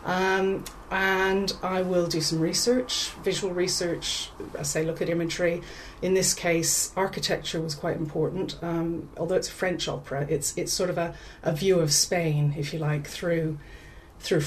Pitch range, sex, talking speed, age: 160-185 Hz, female, 170 wpm, 30-49